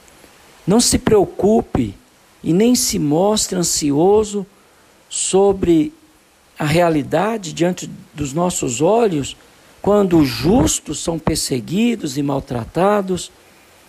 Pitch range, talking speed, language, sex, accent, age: 140-190 Hz, 95 wpm, Portuguese, male, Brazilian, 60-79